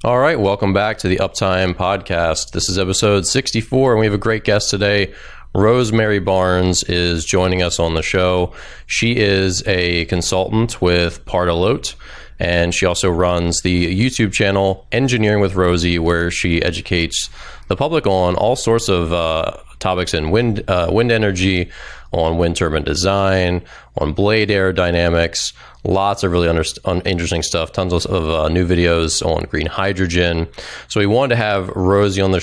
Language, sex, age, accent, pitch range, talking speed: English, male, 30-49, American, 85-100 Hz, 160 wpm